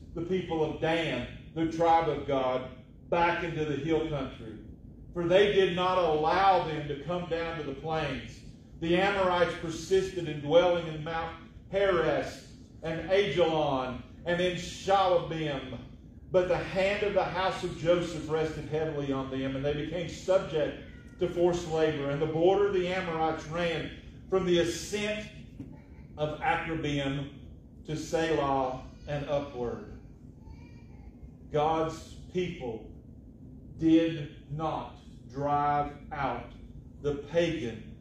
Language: English